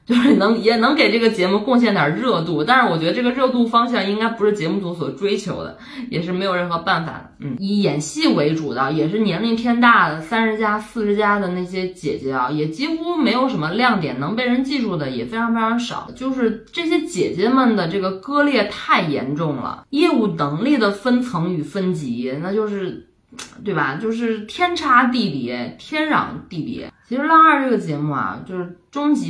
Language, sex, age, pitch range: Chinese, female, 20-39, 155-235 Hz